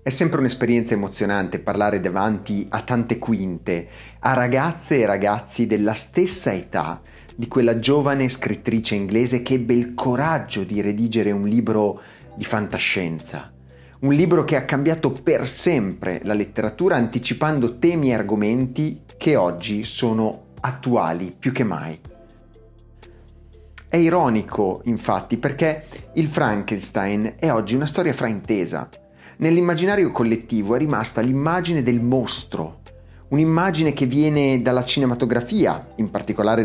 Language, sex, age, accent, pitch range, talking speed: Italian, male, 30-49, native, 100-135 Hz, 125 wpm